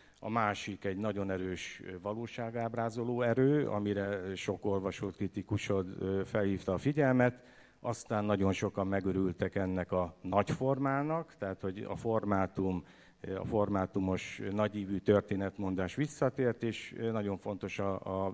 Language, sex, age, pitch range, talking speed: Hungarian, male, 50-69, 95-110 Hz, 115 wpm